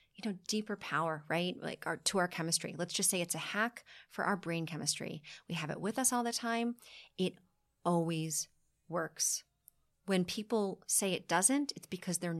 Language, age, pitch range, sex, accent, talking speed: English, 30-49, 165-205 Hz, female, American, 185 wpm